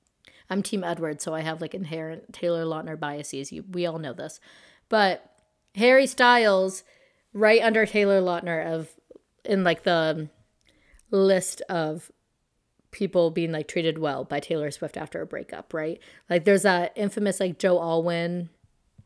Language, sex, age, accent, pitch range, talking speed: English, female, 30-49, American, 170-205 Hz, 150 wpm